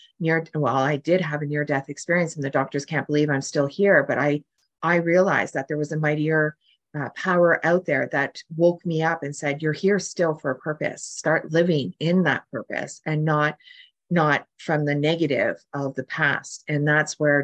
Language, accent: English, American